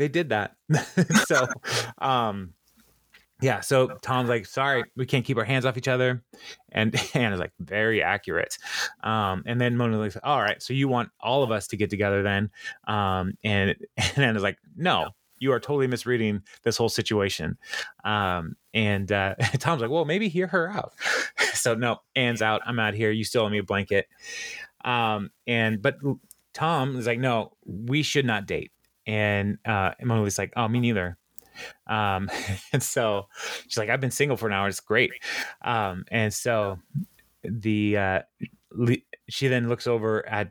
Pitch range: 105-125 Hz